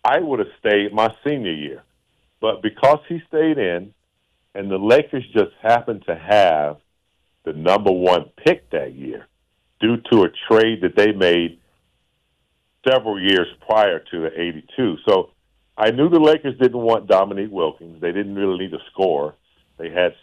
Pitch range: 85-110 Hz